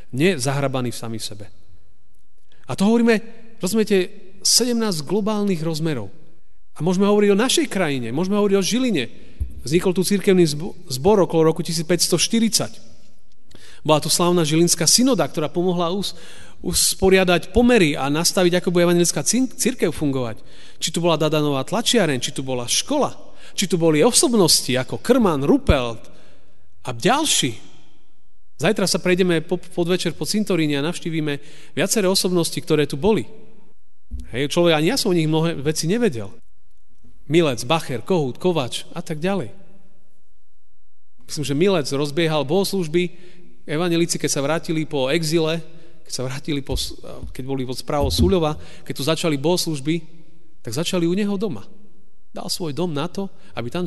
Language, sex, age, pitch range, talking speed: Slovak, male, 40-59, 140-185 Hz, 145 wpm